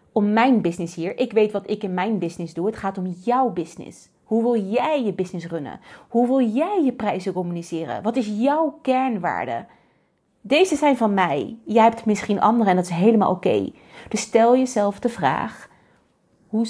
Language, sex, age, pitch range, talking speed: Dutch, female, 30-49, 190-245 Hz, 190 wpm